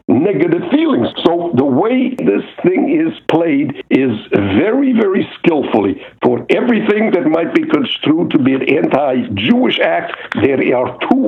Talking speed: 145 wpm